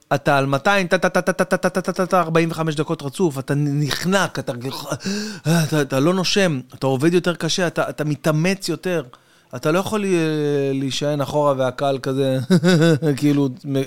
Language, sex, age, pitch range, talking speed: Hebrew, male, 30-49, 125-160 Hz, 115 wpm